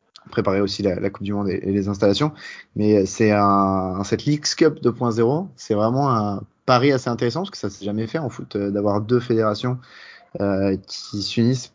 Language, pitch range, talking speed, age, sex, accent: French, 100-120 Hz, 195 wpm, 20-39, male, French